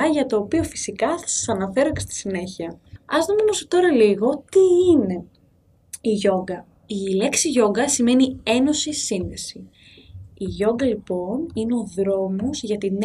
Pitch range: 200-265 Hz